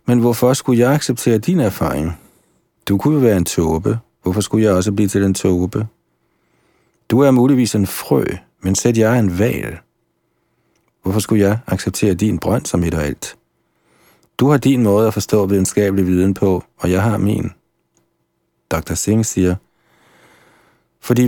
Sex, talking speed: male, 160 wpm